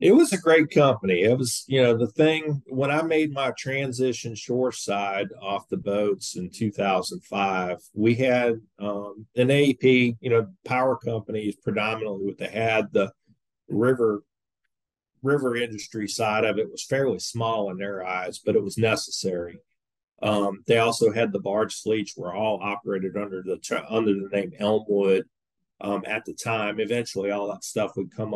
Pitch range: 100-125 Hz